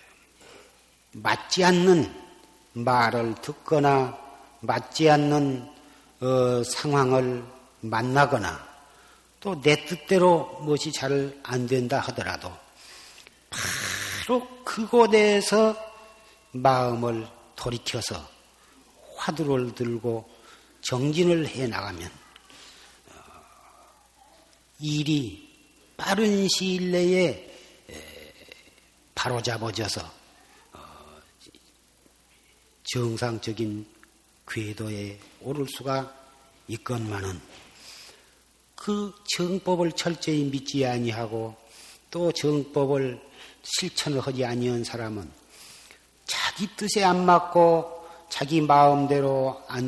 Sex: male